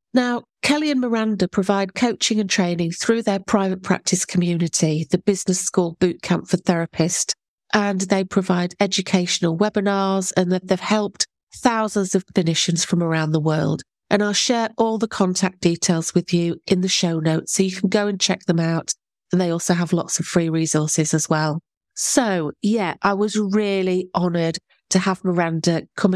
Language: English